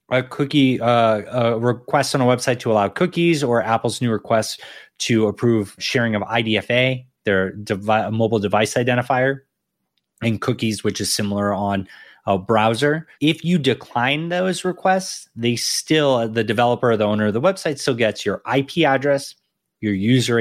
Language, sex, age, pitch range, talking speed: English, male, 20-39, 105-135 Hz, 160 wpm